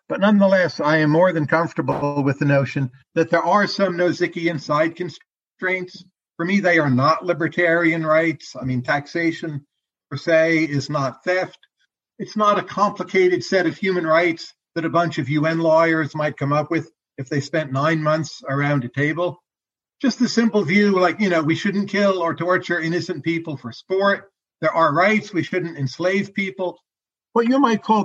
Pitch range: 150-185 Hz